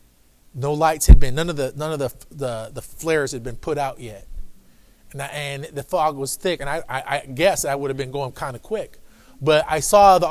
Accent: American